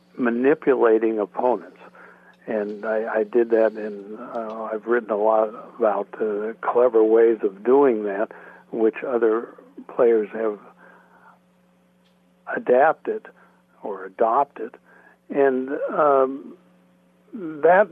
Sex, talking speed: male, 100 wpm